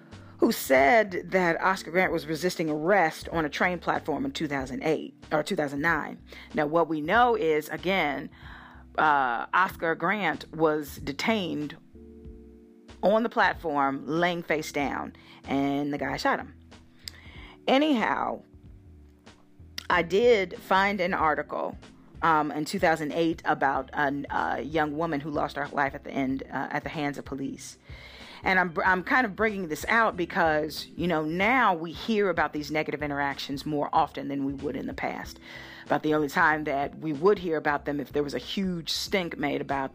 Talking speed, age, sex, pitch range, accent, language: 175 wpm, 40-59, female, 140-180 Hz, American, English